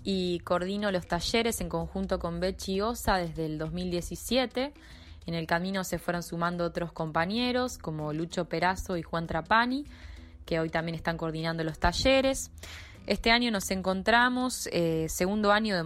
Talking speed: 155 wpm